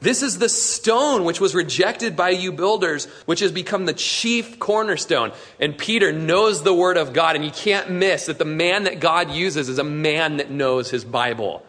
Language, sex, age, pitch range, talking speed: English, male, 30-49, 160-225 Hz, 205 wpm